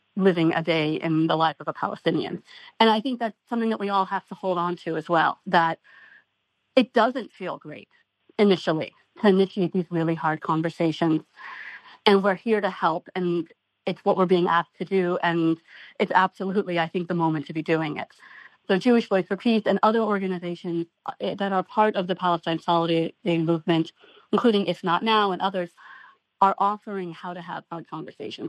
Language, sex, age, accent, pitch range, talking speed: English, female, 40-59, American, 165-200 Hz, 185 wpm